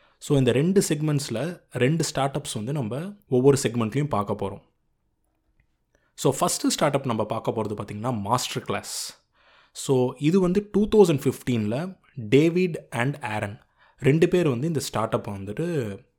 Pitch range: 110-160 Hz